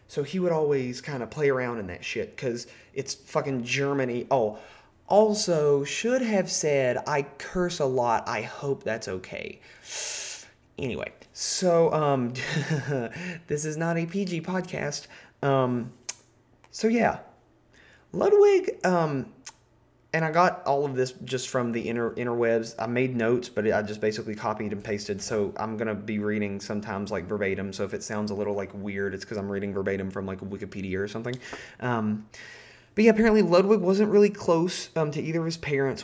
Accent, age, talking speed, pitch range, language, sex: American, 30-49, 170 wpm, 115-160 Hz, English, male